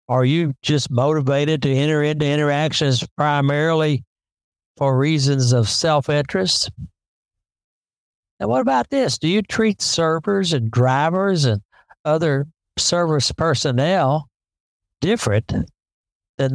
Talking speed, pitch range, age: 105 wpm, 115-150 Hz, 60-79